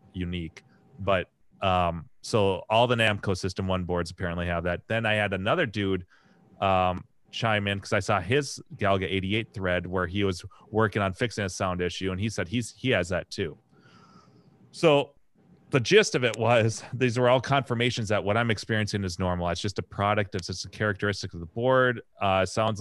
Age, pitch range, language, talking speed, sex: 30-49, 95-115 Hz, English, 195 wpm, male